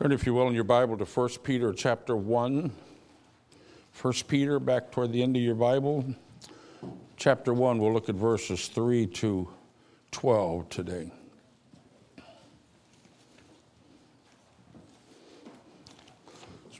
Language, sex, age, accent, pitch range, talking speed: English, male, 60-79, American, 115-145 Hz, 115 wpm